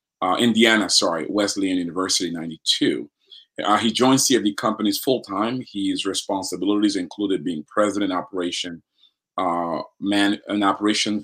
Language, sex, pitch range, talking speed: English, male, 95-115 Hz, 125 wpm